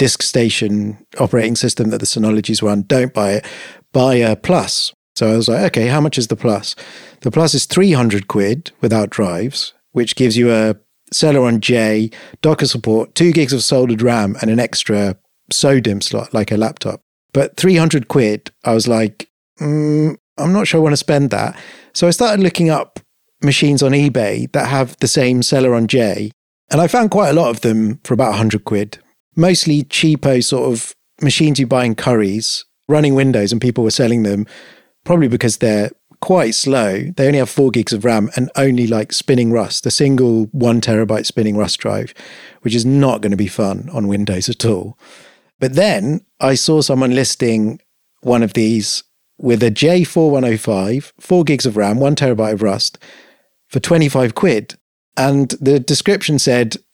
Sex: male